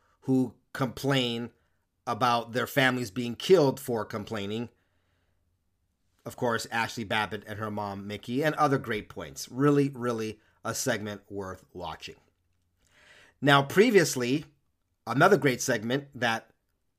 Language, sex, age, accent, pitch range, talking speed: English, male, 40-59, American, 105-130 Hz, 115 wpm